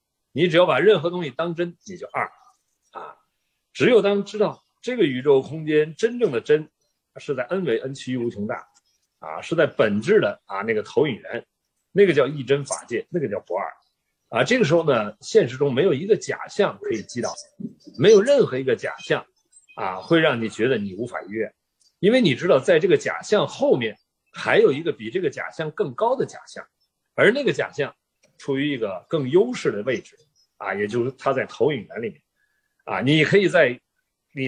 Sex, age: male, 50-69